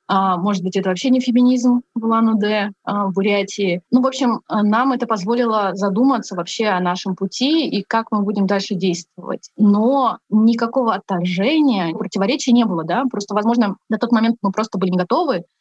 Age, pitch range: 20-39, 190-230 Hz